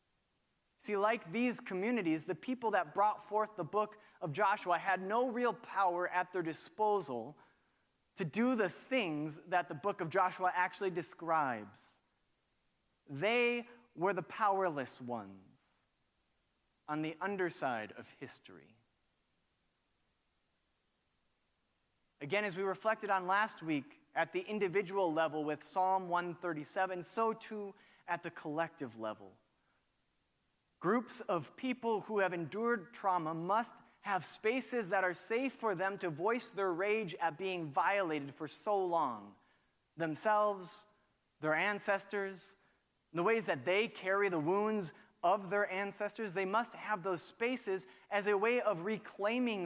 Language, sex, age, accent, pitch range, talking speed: English, male, 30-49, American, 165-215 Hz, 130 wpm